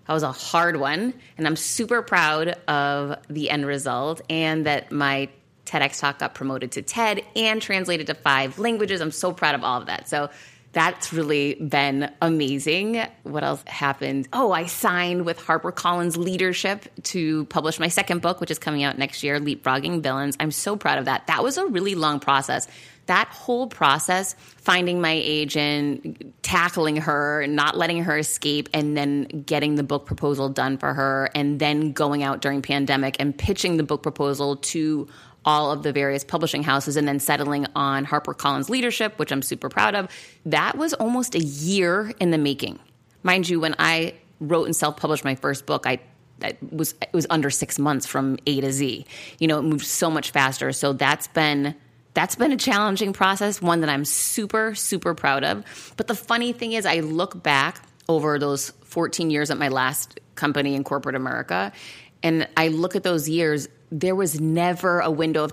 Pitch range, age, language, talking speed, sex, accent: 145-175 Hz, 20-39, English, 190 wpm, female, American